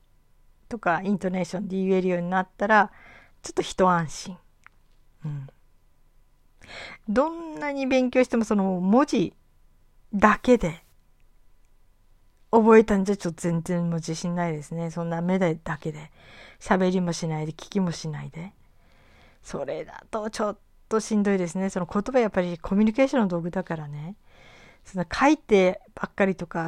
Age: 40-59